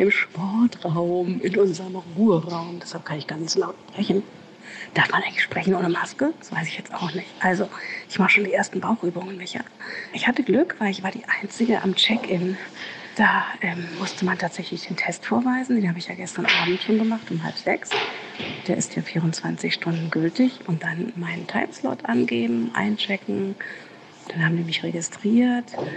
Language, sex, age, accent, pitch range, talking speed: German, female, 40-59, German, 170-210 Hz, 175 wpm